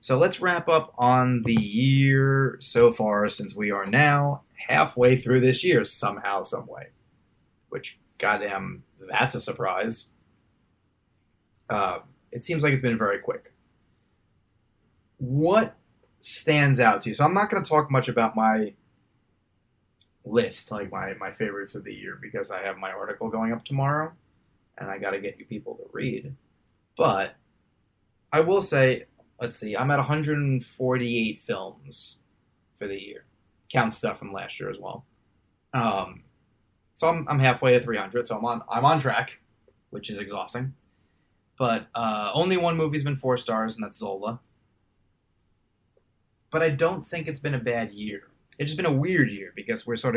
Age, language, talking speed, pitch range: 20-39, English, 165 wpm, 105-135 Hz